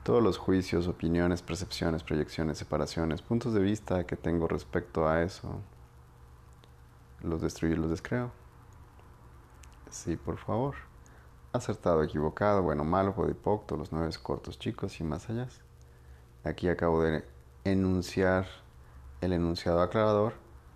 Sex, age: male, 30-49